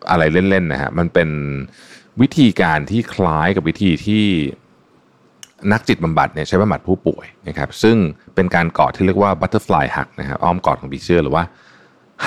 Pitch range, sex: 75-95 Hz, male